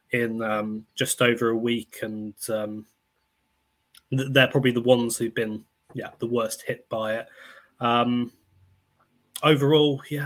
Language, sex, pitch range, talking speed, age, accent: English, male, 110-130 Hz, 135 wpm, 20-39, British